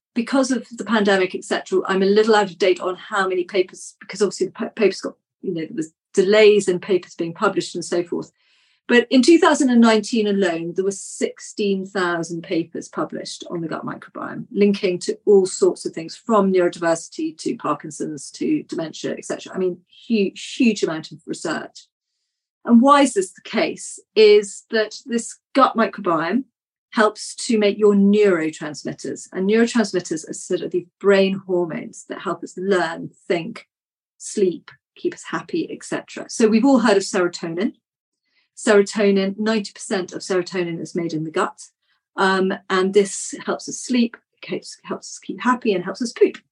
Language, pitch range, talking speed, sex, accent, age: English, 185-235 Hz, 170 wpm, female, British, 40-59